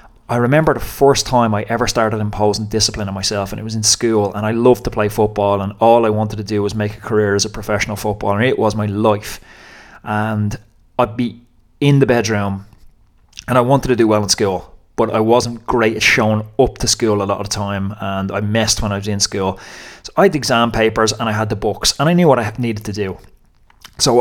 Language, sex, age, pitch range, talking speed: English, male, 20-39, 105-120 Hz, 240 wpm